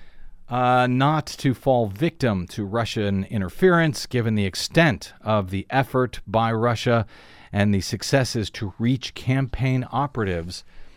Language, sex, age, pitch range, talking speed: English, male, 40-59, 105-130 Hz, 125 wpm